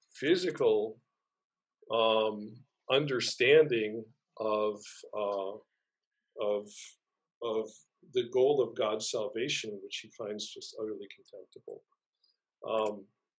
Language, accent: English, American